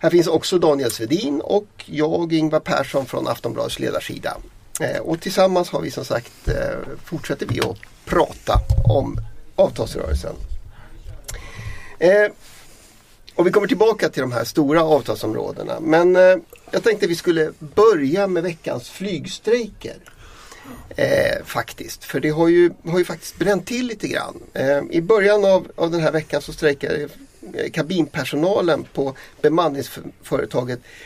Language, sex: Swedish, male